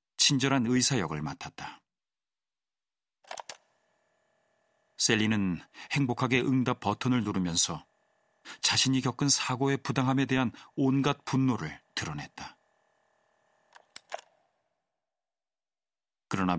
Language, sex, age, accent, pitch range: Korean, male, 40-59, native, 100-130 Hz